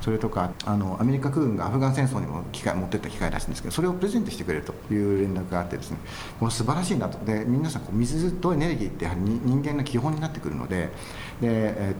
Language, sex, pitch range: Japanese, male, 95-135 Hz